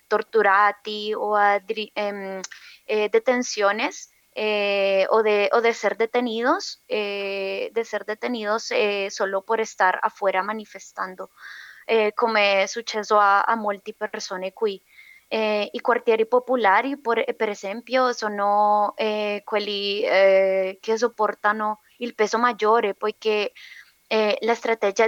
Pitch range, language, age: 200-225 Hz, Italian, 20-39